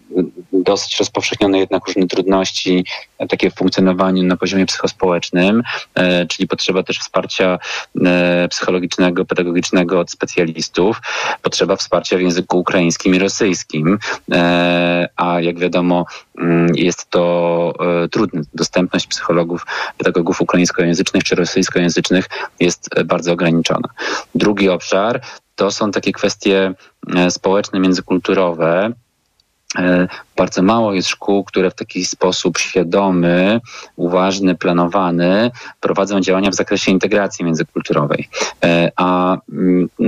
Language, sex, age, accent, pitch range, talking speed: Polish, male, 20-39, native, 90-105 Hz, 100 wpm